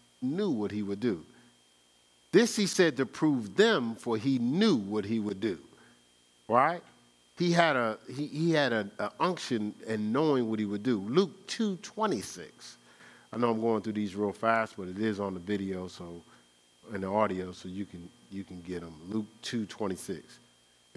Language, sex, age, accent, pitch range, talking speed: English, male, 50-69, American, 85-135 Hz, 175 wpm